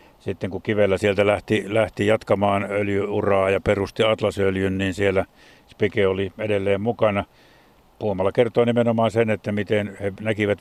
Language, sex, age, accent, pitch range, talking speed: Finnish, male, 50-69, native, 100-115 Hz, 140 wpm